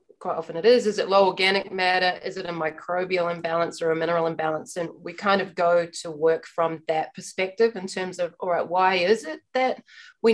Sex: female